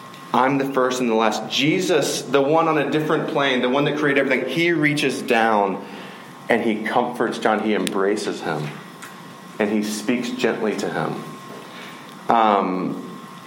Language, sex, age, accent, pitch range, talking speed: English, male, 30-49, American, 110-140 Hz, 155 wpm